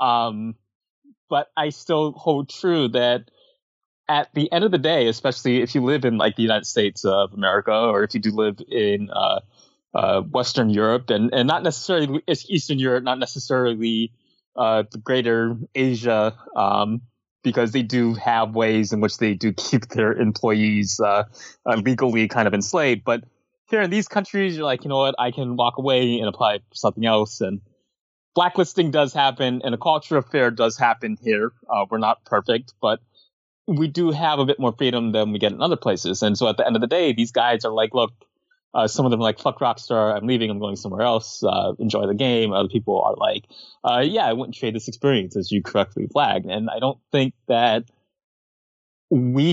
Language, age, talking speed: English, 20-39, 200 wpm